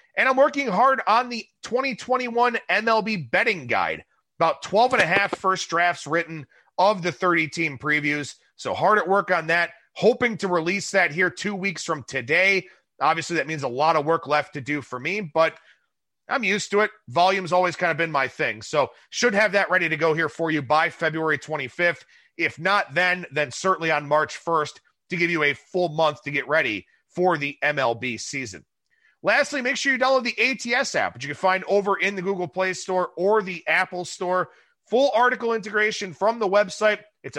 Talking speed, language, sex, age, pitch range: 200 wpm, English, male, 30-49, 160-215 Hz